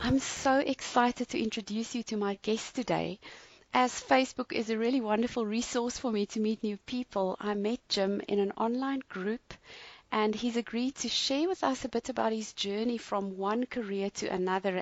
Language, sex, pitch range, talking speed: English, female, 200-260 Hz, 190 wpm